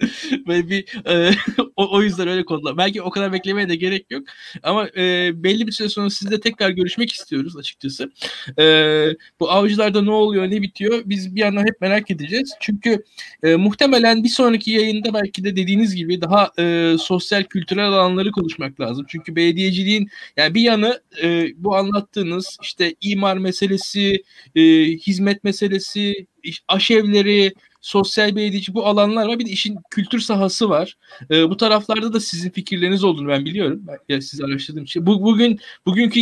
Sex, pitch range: male, 180-210 Hz